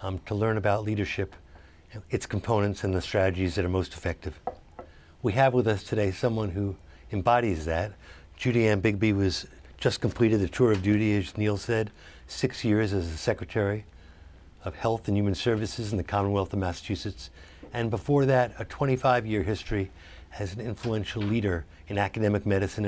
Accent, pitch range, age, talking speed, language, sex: American, 85-115 Hz, 60-79, 170 wpm, English, male